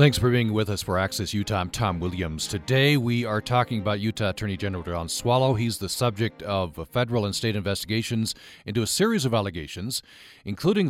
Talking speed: 195 wpm